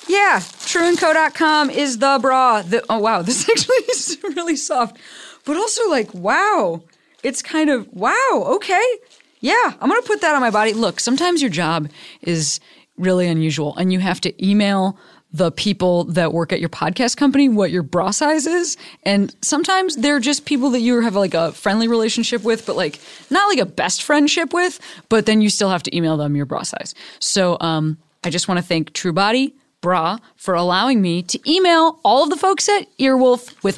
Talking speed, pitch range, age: 190 wpm, 180-285 Hz, 20-39